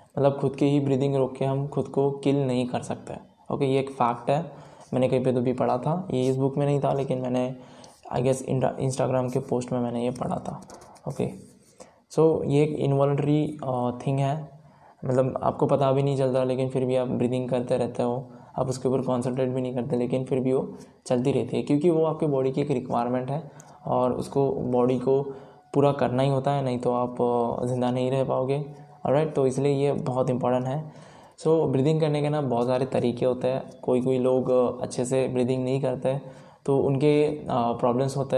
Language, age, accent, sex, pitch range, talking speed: Hindi, 10-29, native, male, 125-140 Hz, 215 wpm